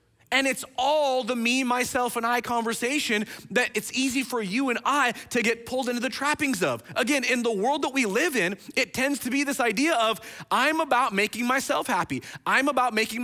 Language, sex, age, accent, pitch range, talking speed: English, male, 30-49, American, 190-250 Hz, 210 wpm